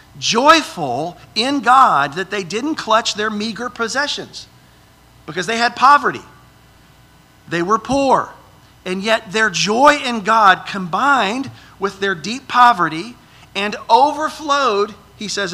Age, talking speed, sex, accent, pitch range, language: 50-69, 125 wpm, male, American, 150-215 Hz, English